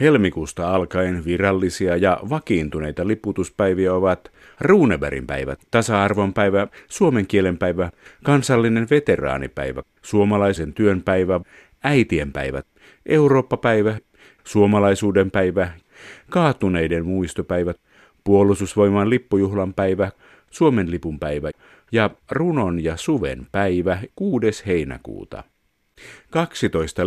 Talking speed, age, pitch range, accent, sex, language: 90 wpm, 50-69, 85-105 Hz, native, male, Finnish